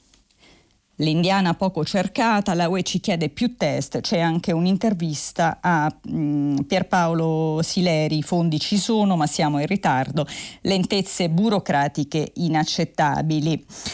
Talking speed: 110 wpm